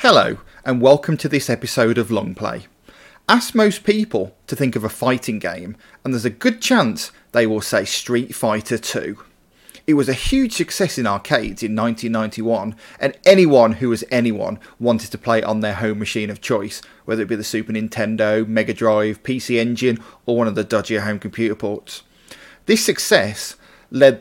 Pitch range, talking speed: 110-160 Hz, 180 wpm